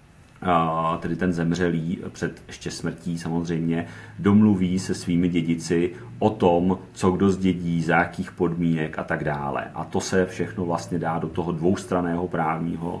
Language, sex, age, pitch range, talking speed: Czech, male, 40-59, 80-85 Hz, 150 wpm